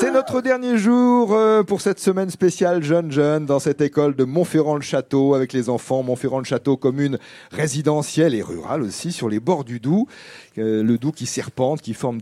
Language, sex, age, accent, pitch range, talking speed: French, male, 40-59, French, 125-200 Hz, 175 wpm